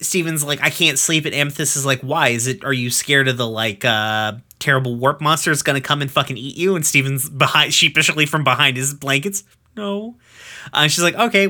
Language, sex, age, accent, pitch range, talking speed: English, male, 30-49, American, 120-160 Hz, 220 wpm